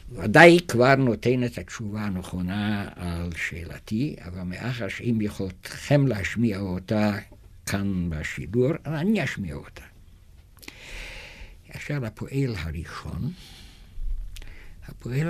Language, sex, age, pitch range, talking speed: Hebrew, male, 60-79, 90-145 Hz, 90 wpm